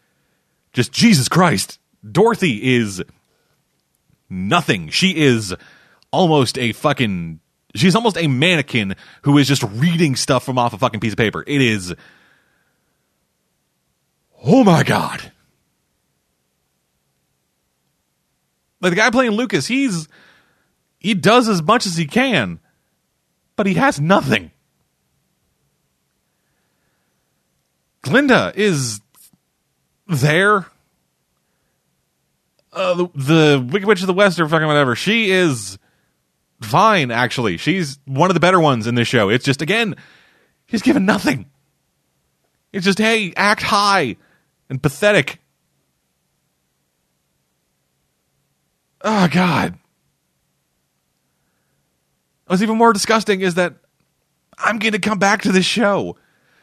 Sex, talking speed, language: male, 110 wpm, English